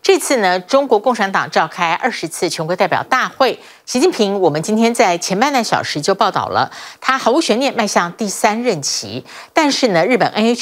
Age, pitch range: 50-69, 185-260 Hz